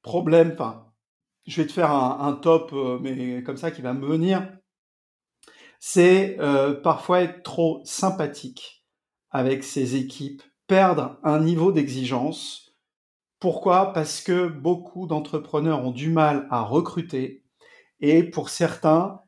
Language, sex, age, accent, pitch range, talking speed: French, male, 50-69, French, 140-180 Hz, 135 wpm